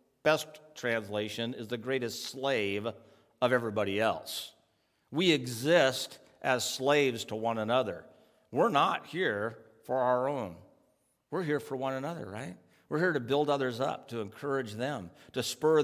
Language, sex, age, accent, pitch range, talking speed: English, male, 50-69, American, 120-175 Hz, 150 wpm